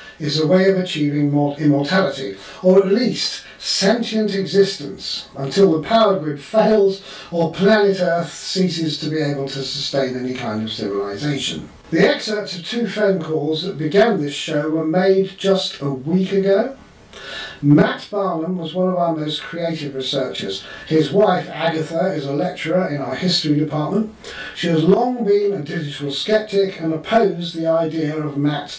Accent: British